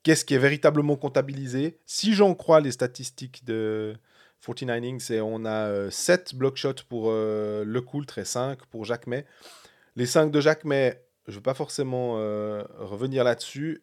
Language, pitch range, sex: French, 110-155 Hz, male